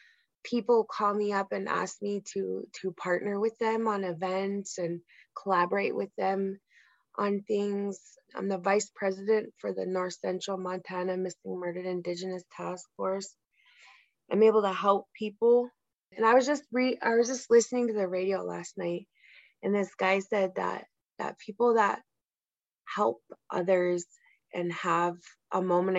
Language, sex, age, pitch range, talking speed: English, female, 20-39, 175-200 Hz, 155 wpm